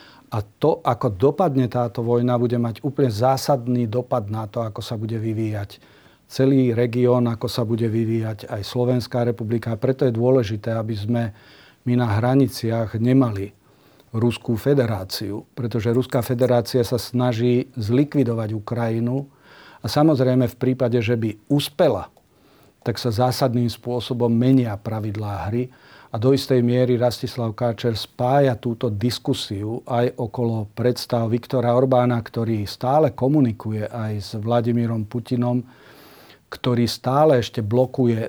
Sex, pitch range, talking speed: male, 115-125 Hz, 130 wpm